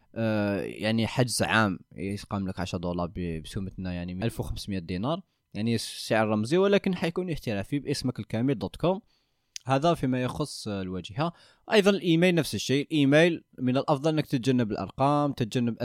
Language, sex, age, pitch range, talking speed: Arabic, male, 20-39, 105-140 Hz, 135 wpm